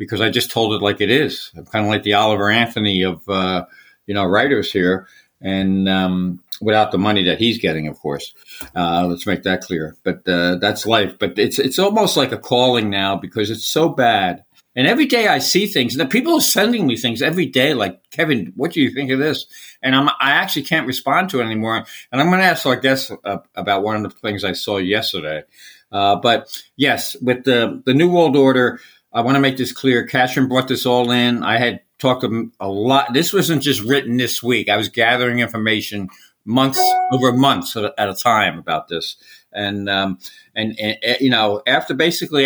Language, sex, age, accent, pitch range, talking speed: English, male, 60-79, American, 105-135 Hz, 215 wpm